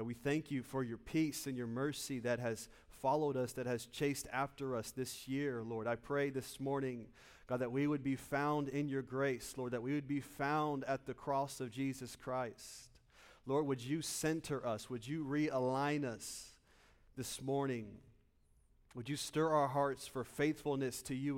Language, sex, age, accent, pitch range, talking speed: English, male, 40-59, American, 120-145 Hz, 185 wpm